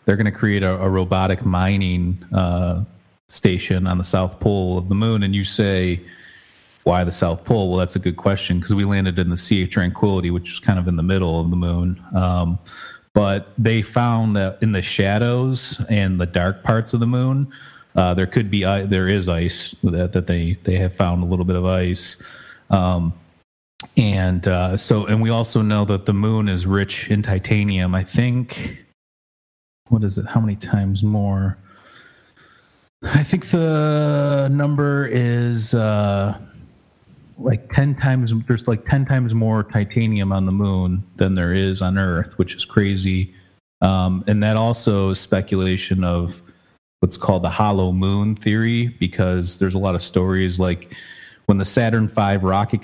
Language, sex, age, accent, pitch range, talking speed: English, male, 30-49, American, 90-110 Hz, 175 wpm